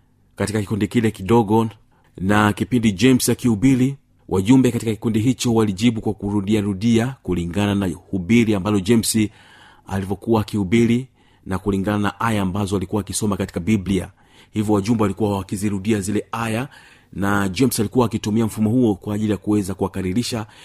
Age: 40-59